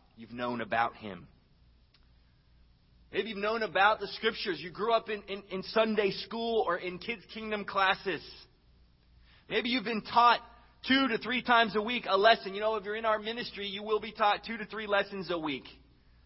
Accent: American